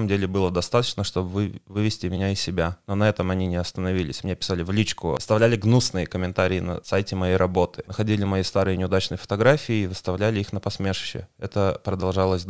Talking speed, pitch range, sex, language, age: 180 wpm, 90-105 Hz, male, Russian, 20-39